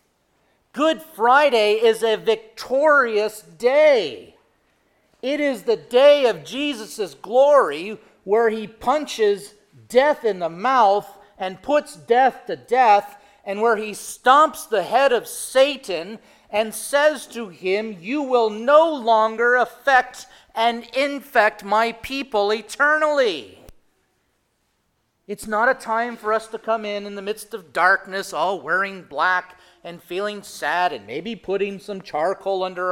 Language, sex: English, male